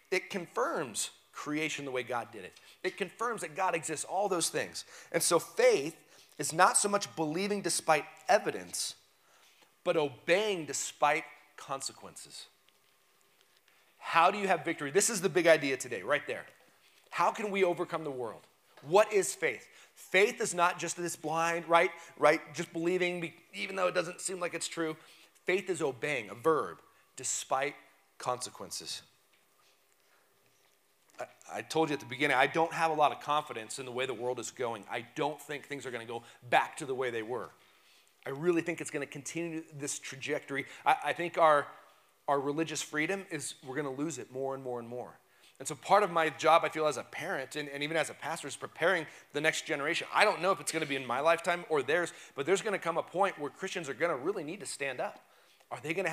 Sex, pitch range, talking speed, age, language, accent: male, 145-185 Hz, 200 wpm, 30-49, English, American